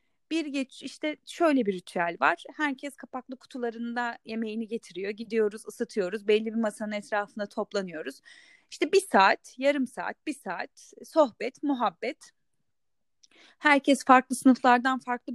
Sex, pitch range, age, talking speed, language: female, 205-275 Hz, 30-49, 125 wpm, Turkish